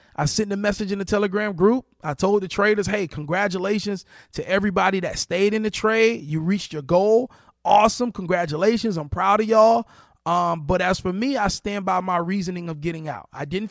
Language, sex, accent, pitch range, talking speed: English, male, American, 165-215 Hz, 195 wpm